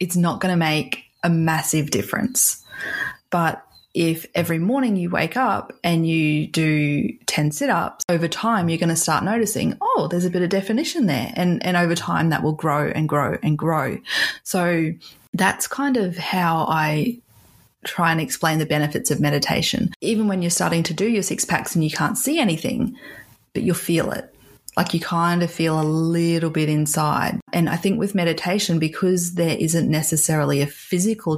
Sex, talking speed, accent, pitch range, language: female, 185 wpm, Australian, 155-185 Hz, English